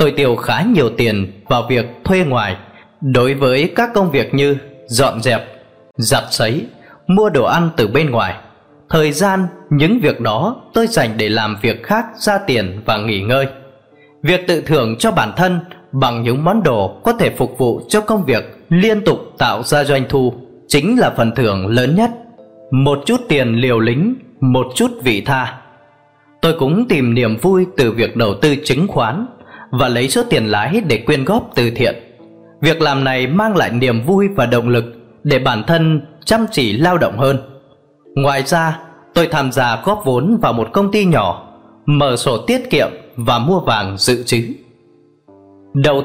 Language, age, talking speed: Vietnamese, 20-39, 180 wpm